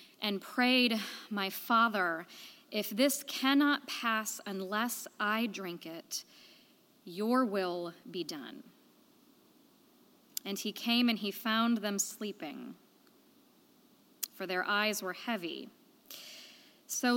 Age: 20-39